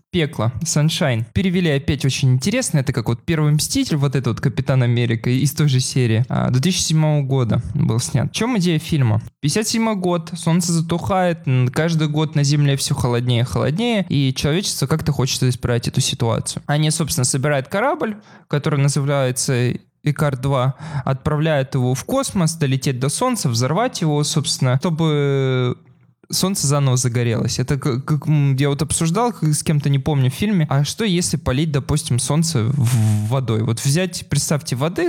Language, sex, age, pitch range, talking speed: Russian, male, 20-39, 130-165 Hz, 155 wpm